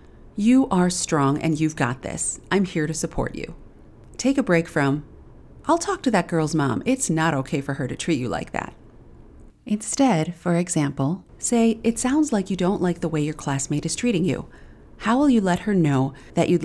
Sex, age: female, 40-59